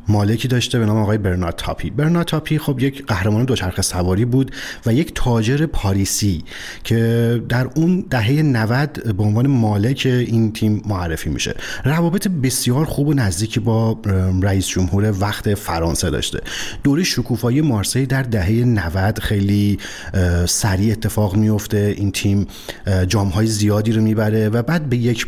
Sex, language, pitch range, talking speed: male, Persian, 100-120 Hz, 150 wpm